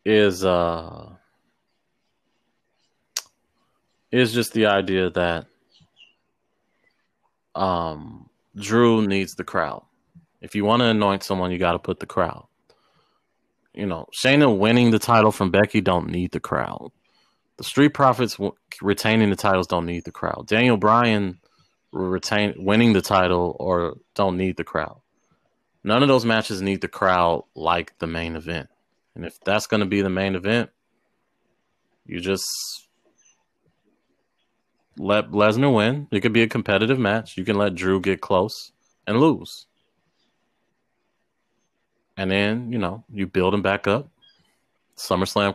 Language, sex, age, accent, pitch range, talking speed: English, male, 30-49, American, 95-110 Hz, 140 wpm